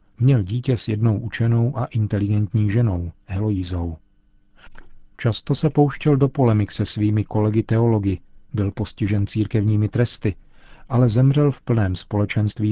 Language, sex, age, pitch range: Czech, male, 40-59, 100-120 Hz